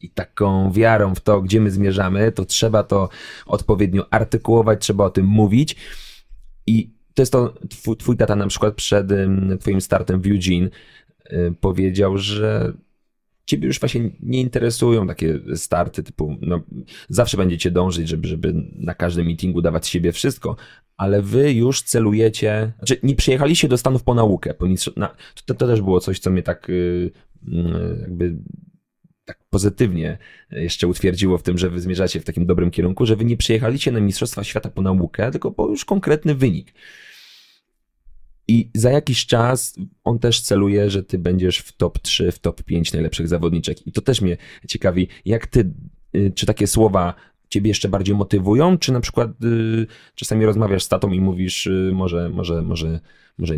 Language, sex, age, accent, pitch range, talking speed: Polish, male, 30-49, native, 90-115 Hz, 160 wpm